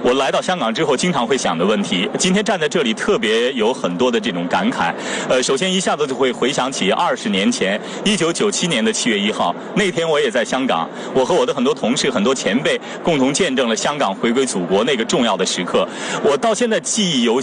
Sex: male